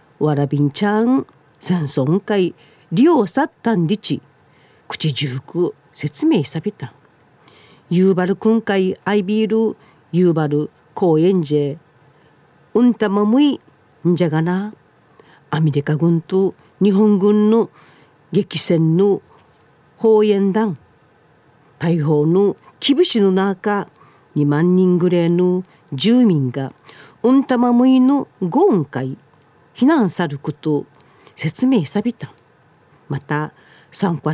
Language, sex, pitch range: Japanese, female, 150-205 Hz